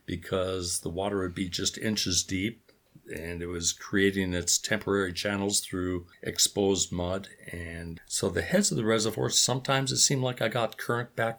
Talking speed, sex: 175 wpm, male